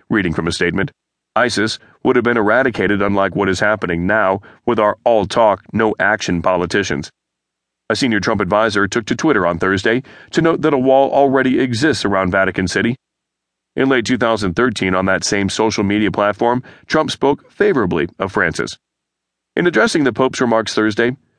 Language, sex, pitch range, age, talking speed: English, male, 95-120 Hz, 40-59, 165 wpm